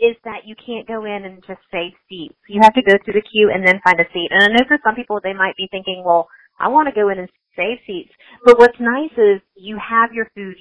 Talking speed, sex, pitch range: 275 wpm, female, 190-240 Hz